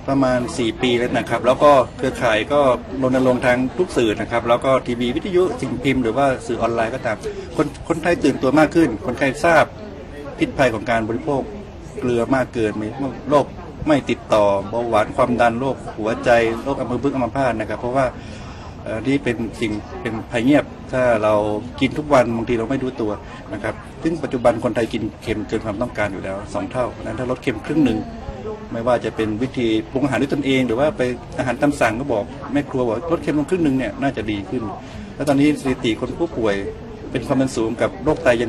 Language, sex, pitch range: Thai, male, 115-135 Hz